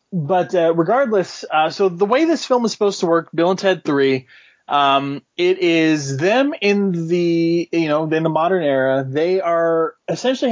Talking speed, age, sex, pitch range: 185 wpm, 30-49, male, 135-180 Hz